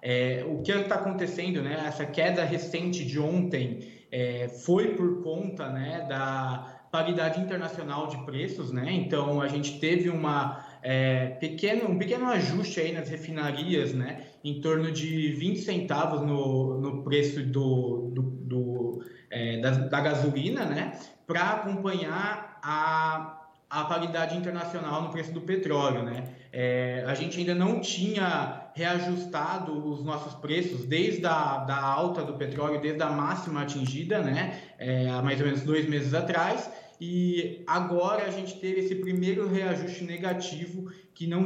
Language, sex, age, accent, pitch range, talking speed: Portuguese, male, 20-39, Brazilian, 140-180 Hz, 150 wpm